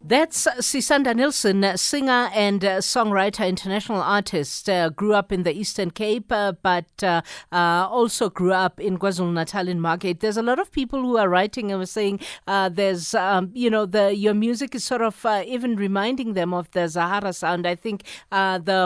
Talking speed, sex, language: 190 wpm, female, English